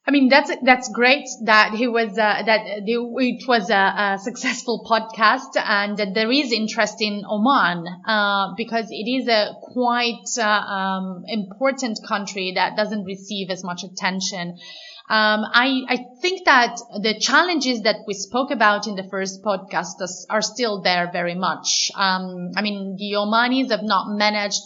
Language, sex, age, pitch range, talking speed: English, female, 30-49, 195-235 Hz, 165 wpm